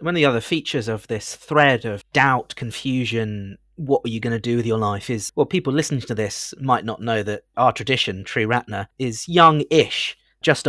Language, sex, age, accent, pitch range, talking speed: English, male, 40-59, British, 105-130 Hz, 200 wpm